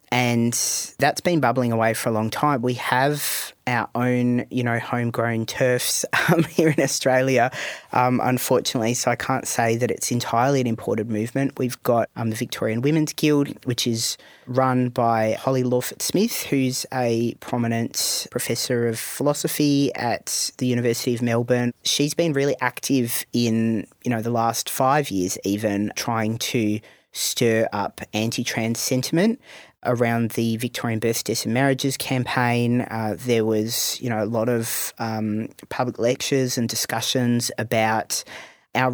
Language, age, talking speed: English, 30-49, 150 wpm